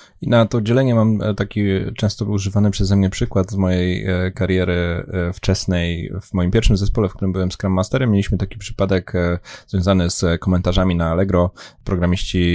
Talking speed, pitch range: 160 wpm, 90-100 Hz